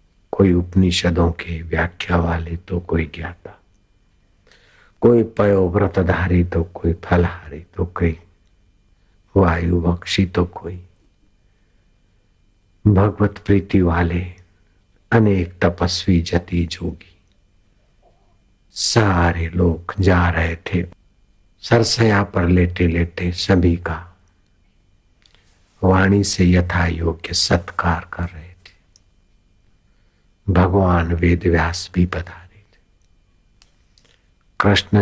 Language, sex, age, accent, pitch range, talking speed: Hindi, male, 60-79, native, 85-100 Hz, 90 wpm